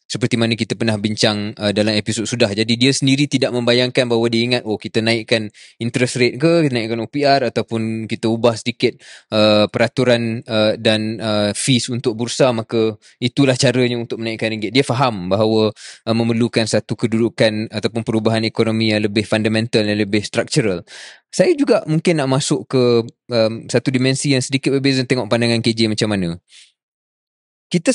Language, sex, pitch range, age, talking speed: Malay, male, 110-140 Hz, 20-39, 170 wpm